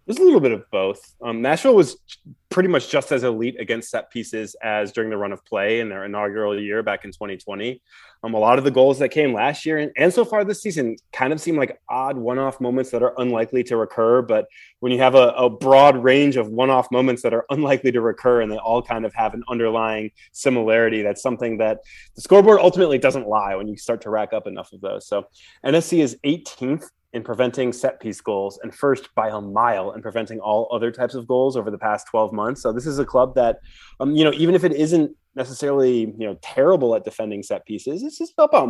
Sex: male